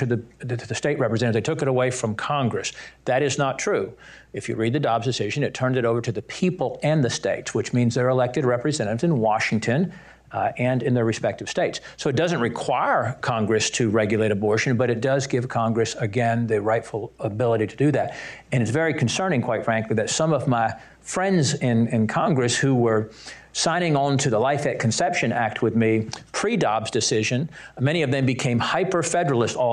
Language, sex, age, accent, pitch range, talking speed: English, male, 50-69, American, 115-145 Hz, 200 wpm